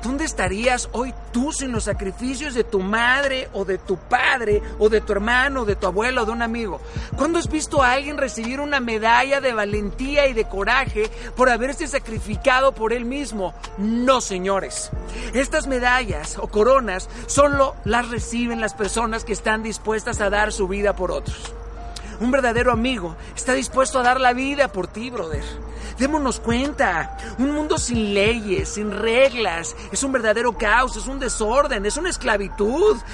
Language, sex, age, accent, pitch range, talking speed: Spanish, male, 40-59, Mexican, 220-275 Hz, 170 wpm